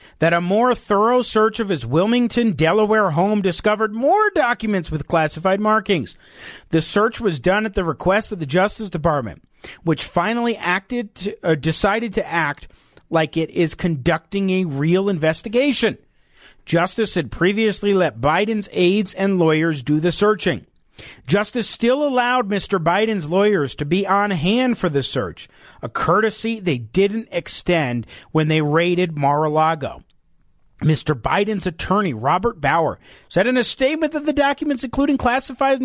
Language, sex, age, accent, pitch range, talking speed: English, male, 40-59, American, 160-225 Hz, 150 wpm